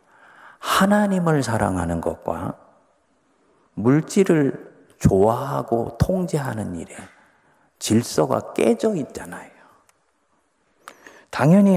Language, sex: Korean, male